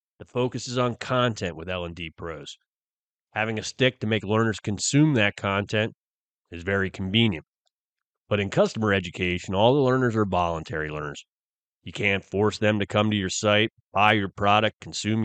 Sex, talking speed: male, 170 wpm